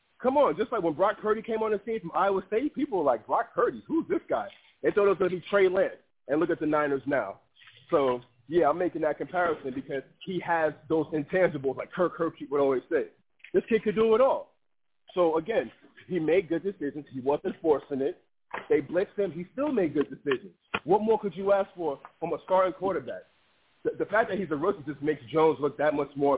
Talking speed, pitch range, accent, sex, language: 230 wpm, 155-210 Hz, American, male, English